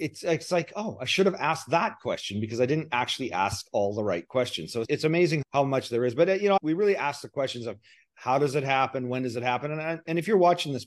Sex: male